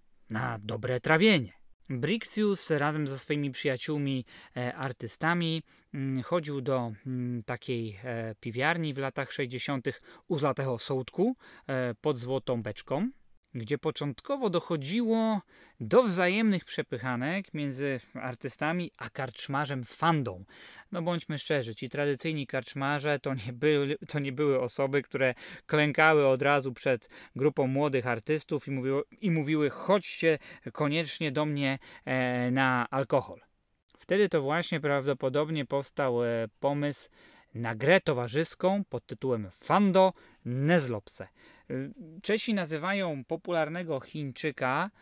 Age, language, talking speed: 20-39, Polish, 105 wpm